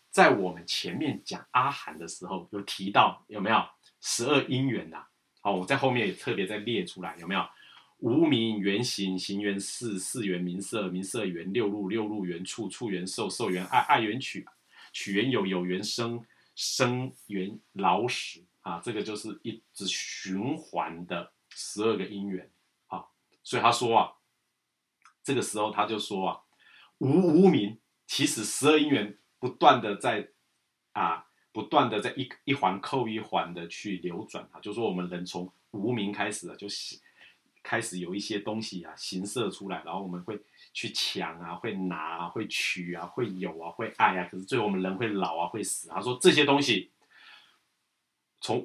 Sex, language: male, Chinese